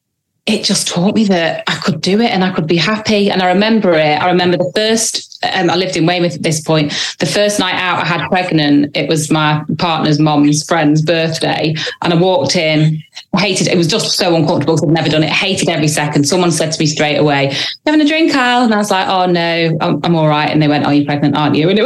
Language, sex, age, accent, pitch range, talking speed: English, female, 20-39, British, 155-200 Hz, 260 wpm